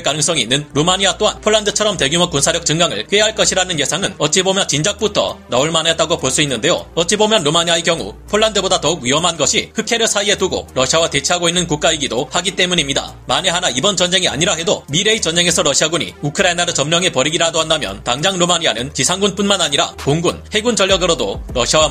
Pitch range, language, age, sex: 155-195 Hz, Korean, 40-59, male